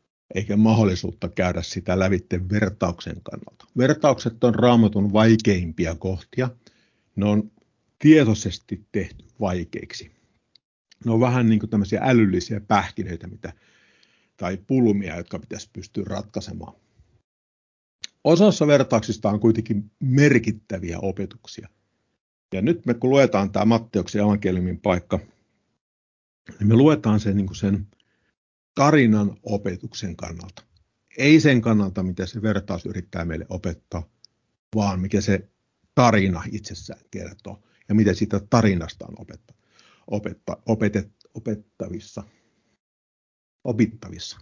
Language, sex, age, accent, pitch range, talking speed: Finnish, male, 50-69, native, 95-115 Hz, 105 wpm